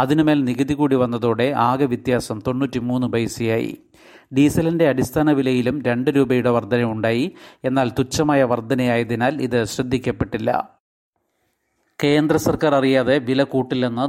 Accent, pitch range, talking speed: native, 125-140 Hz, 100 wpm